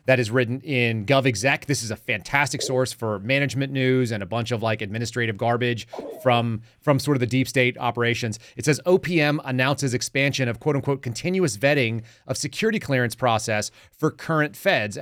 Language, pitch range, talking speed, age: English, 115-140 Hz, 175 wpm, 30-49